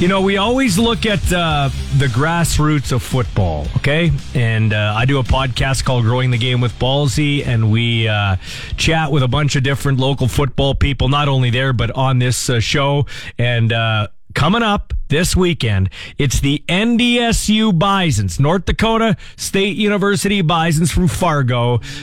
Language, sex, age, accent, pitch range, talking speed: English, male, 40-59, American, 130-205 Hz, 165 wpm